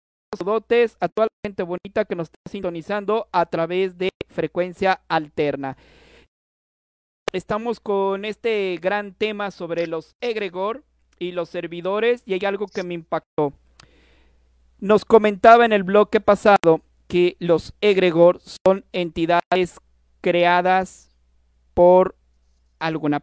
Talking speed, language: 115 wpm, Spanish